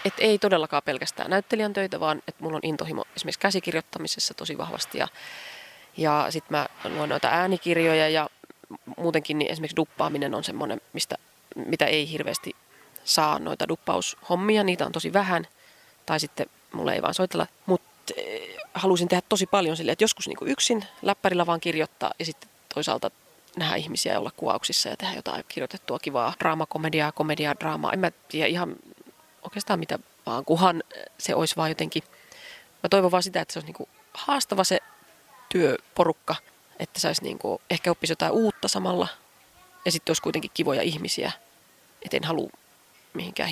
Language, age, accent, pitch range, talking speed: Finnish, 30-49, native, 160-210 Hz, 160 wpm